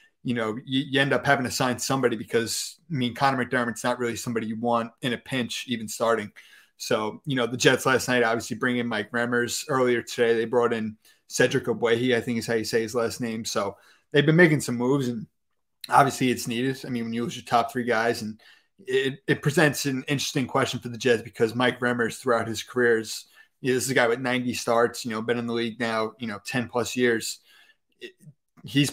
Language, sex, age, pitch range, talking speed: English, male, 20-39, 115-135 Hz, 220 wpm